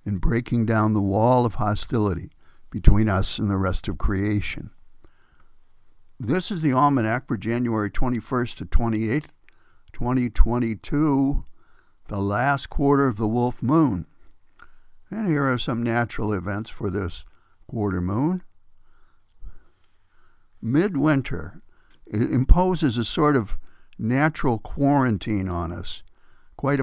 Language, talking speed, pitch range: English, 115 wpm, 100-140 Hz